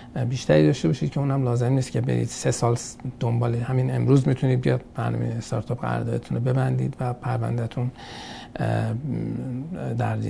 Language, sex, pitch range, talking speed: Persian, male, 120-155 Hz, 140 wpm